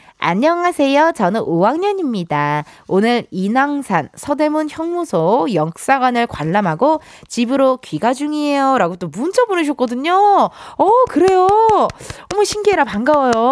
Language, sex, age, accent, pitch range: Korean, female, 20-39, native, 195-315 Hz